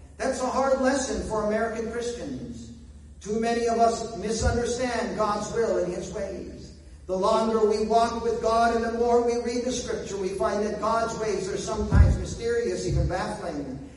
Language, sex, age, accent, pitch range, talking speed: English, male, 50-69, American, 190-240 Hz, 170 wpm